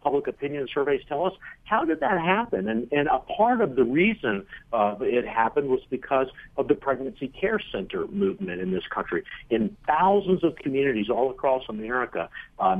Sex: male